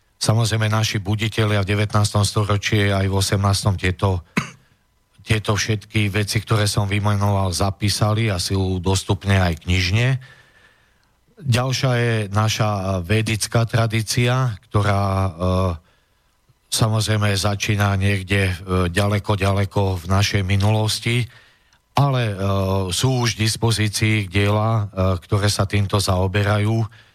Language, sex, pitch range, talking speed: Slovak, male, 95-110 Hz, 100 wpm